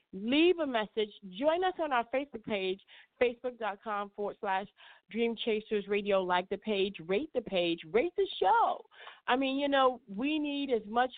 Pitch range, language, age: 205-265 Hz, English, 40-59